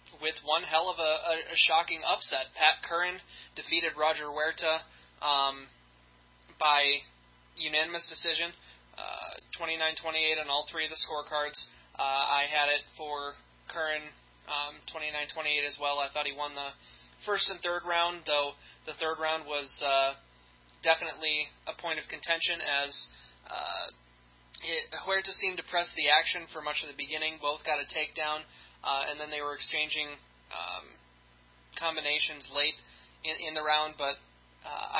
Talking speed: 150 wpm